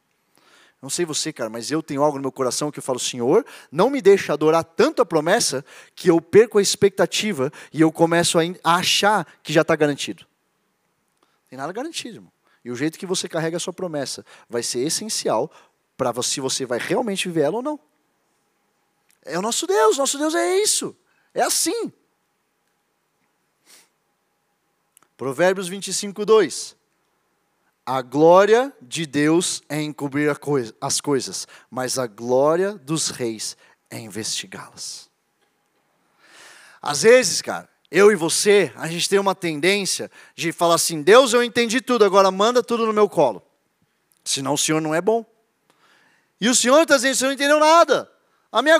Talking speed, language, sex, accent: 160 wpm, Portuguese, male, Brazilian